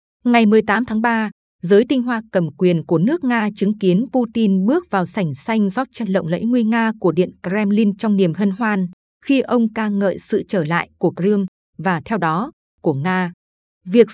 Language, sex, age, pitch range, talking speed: Vietnamese, female, 20-39, 180-230 Hz, 200 wpm